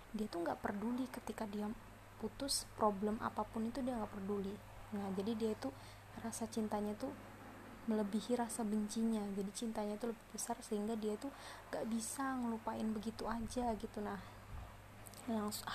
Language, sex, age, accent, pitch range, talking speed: Indonesian, female, 20-39, native, 205-230 Hz, 150 wpm